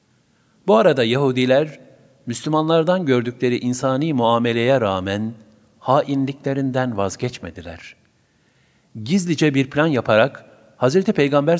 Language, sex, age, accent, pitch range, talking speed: Turkish, male, 50-69, native, 110-145 Hz, 85 wpm